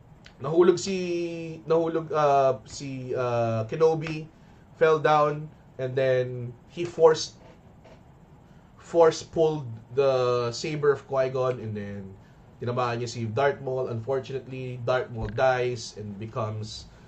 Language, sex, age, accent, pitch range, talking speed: English, male, 20-39, Filipino, 115-155 Hz, 110 wpm